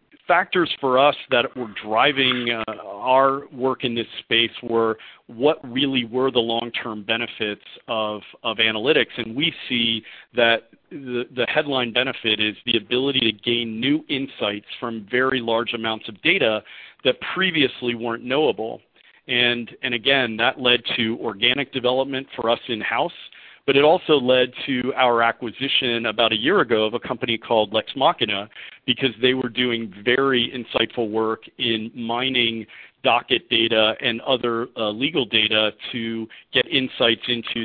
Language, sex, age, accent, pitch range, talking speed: English, male, 40-59, American, 110-130 Hz, 150 wpm